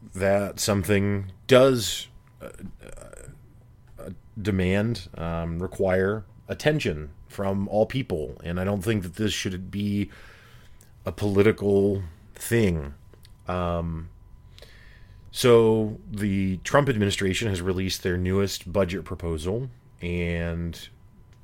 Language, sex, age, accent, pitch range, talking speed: English, male, 30-49, American, 90-110 Hz, 100 wpm